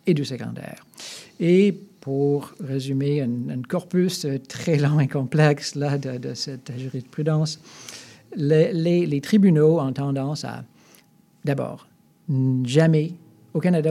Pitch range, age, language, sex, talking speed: 140-175 Hz, 50-69, French, male, 125 wpm